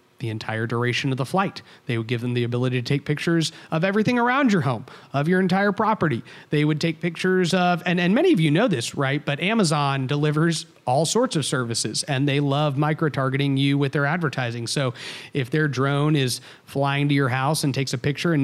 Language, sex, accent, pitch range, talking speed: English, male, American, 140-175 Hz, 215 wpm